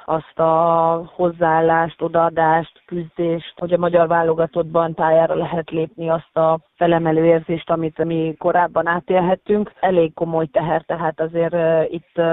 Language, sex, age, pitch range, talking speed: Hungarian, female, 30-49, 160-170 Hz, 125 wpm